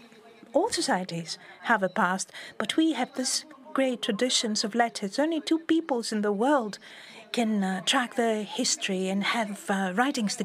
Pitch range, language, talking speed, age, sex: 205-300 Hz, Greek, 165 wpm, 40-59, female